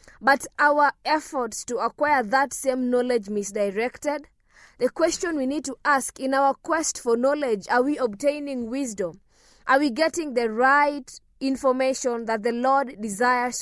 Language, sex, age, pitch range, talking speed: English, female, 20-39, 230-290 Hz, 150 wpm